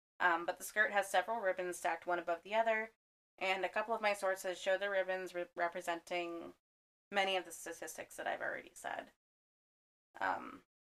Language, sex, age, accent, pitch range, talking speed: English, female, 20-39, American, 175-195 Hz, 170 wpm